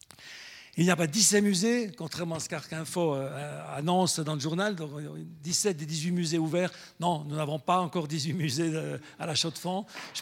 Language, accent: French, French